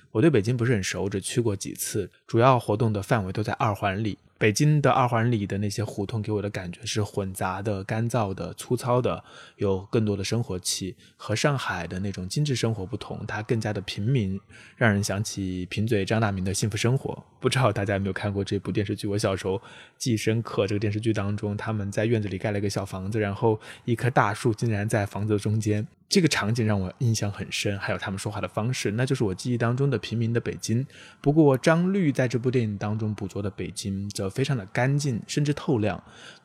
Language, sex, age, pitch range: Chinese, male, 20-39, 100-125 Hz